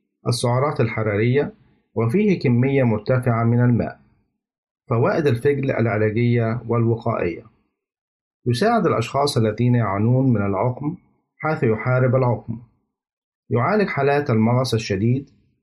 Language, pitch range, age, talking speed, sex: Arabic, 115-135 Hz, 50-69, 90 wpm, male